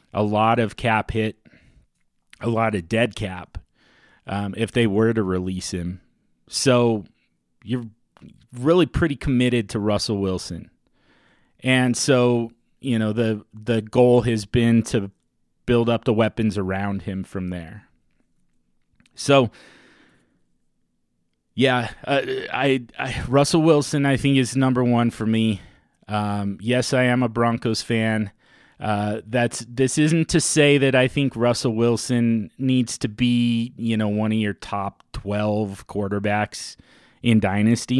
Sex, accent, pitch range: male, American, 105-130 Hz